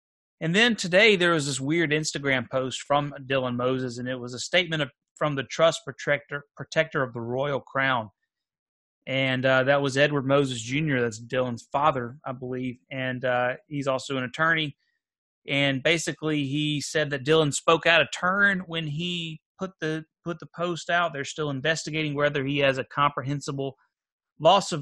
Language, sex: English, male